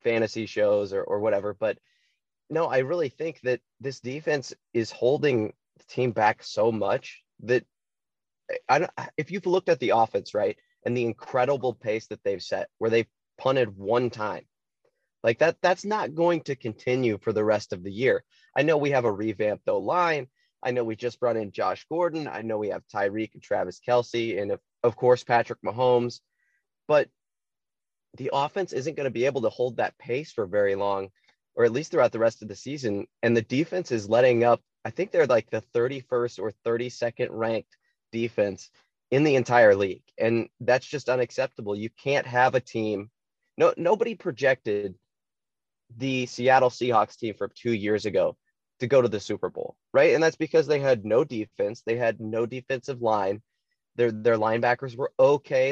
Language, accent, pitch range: English, American, 115-150 Hz